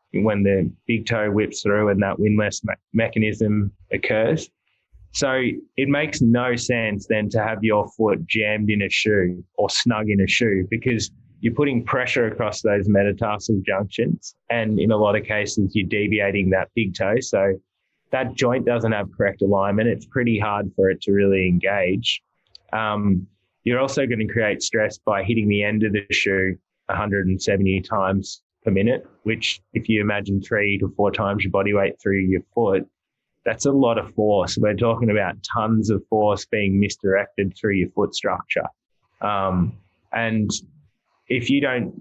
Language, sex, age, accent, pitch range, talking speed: English, male, 20-39, Australian, 100-115 Hz, 170 wpm